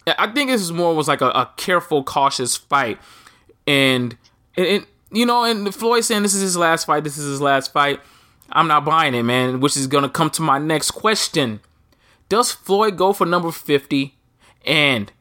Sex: male